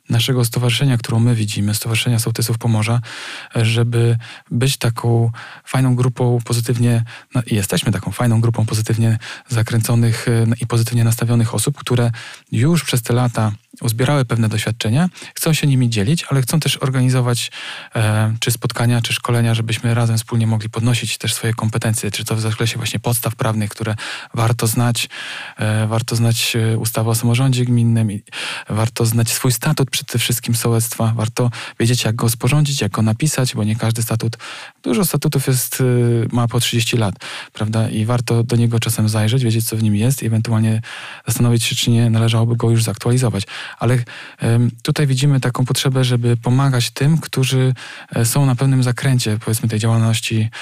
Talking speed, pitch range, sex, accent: 160 wpm, 115-125 Hz, male, native